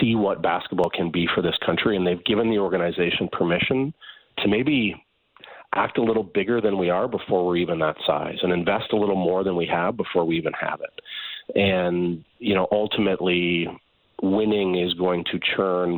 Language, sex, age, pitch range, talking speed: English, male, 40-59, 85-100 Hz, 190 wpm